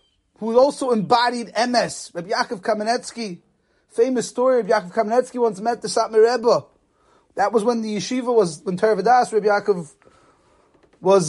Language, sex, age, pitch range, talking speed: English, male, 30-49, 210-255 Hz, 155 wpm